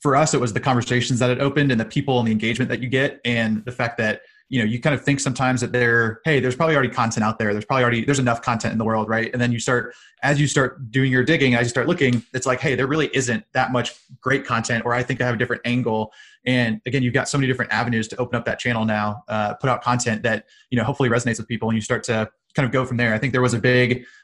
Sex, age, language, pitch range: male, 20-39, English, 115-130 Hz